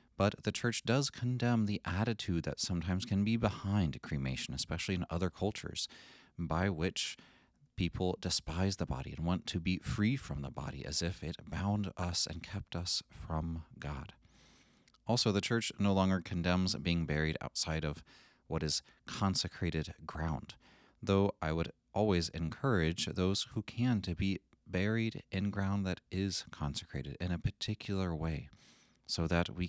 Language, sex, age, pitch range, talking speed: English, male, 30-49, 85-105 Hz, 160 wpm